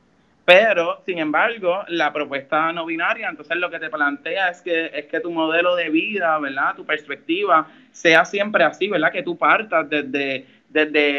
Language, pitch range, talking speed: Spanish, 150-185 Hz, 170 wpm